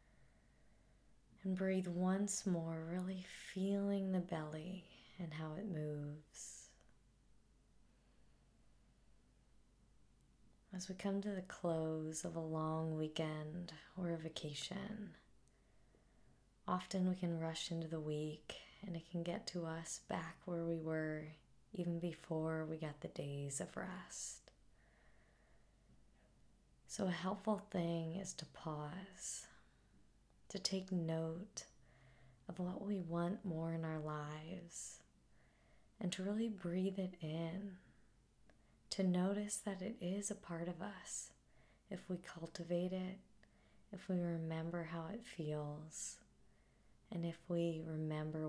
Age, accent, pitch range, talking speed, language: 20-39, American, 160-190 Hz, 120 wpm, English